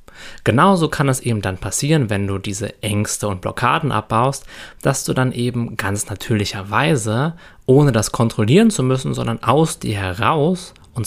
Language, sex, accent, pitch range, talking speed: German, male, German, 105-135 Hz, 155 wpm